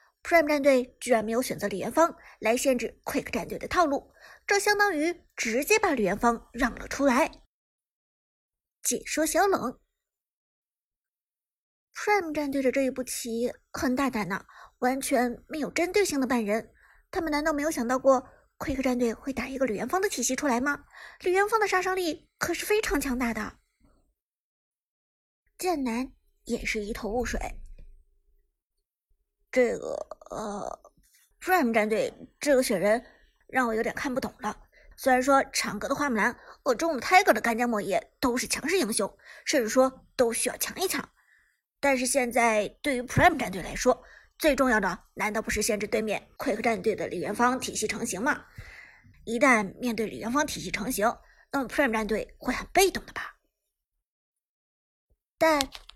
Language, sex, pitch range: Chinese, male, 230-305 Hz